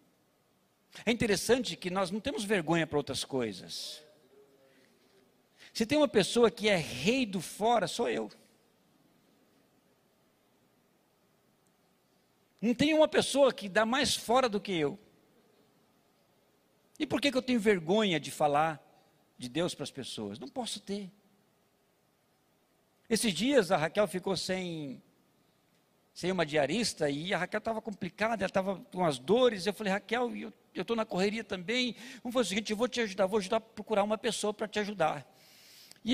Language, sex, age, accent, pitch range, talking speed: Portuguese, male, 60-79, Brazilian, 185-235 Hz, 155 wpm